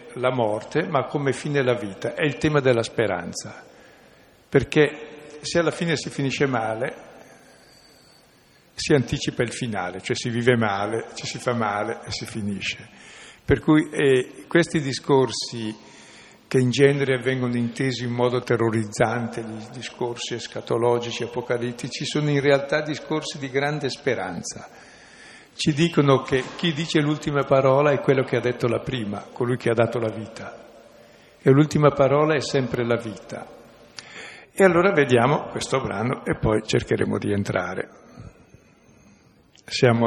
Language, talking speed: Italian, 145 wpm